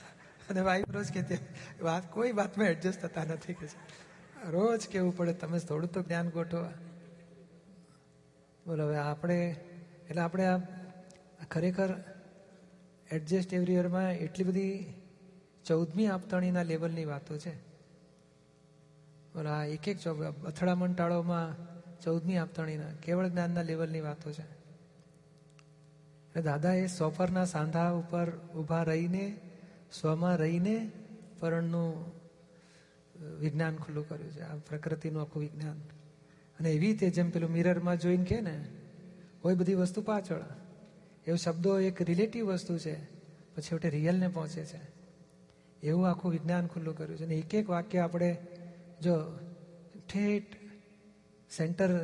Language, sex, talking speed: Gujarati, male, 90 wpm